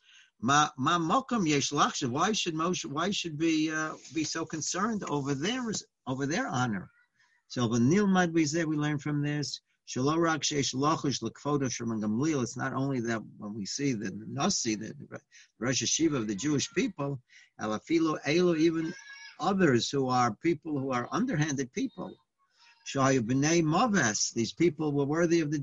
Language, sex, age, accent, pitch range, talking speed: English, male, 60-79, American, 120-155 Hz, 125 wpm